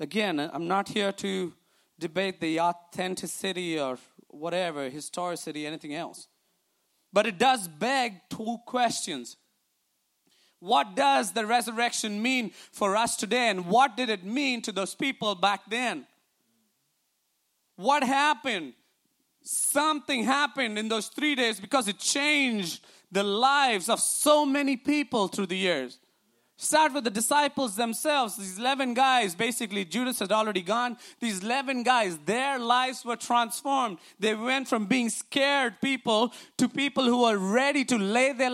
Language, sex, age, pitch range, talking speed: English, male, 30-49, 200-265 Hz, 140 wpm